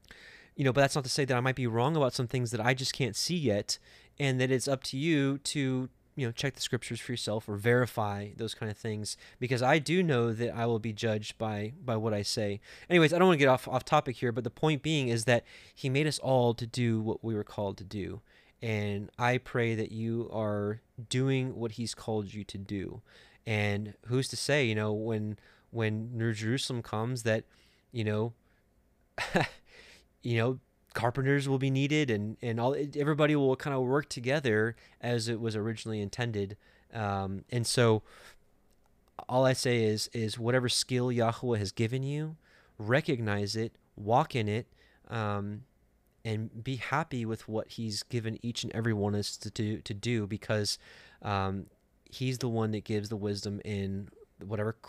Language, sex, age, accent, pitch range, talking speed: English, male, 20-39, American, 105-130 Hz, 195 wpm